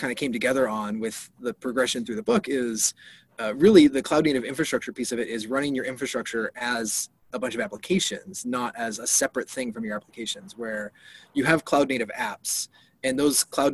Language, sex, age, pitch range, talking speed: English, male, 20-39, 115-145 Hz, 205 wpm